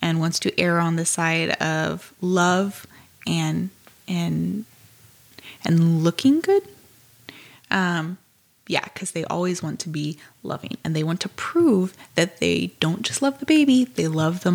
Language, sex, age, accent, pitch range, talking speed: English, female, 20-39, American, 135-185 Hz, 155 wpm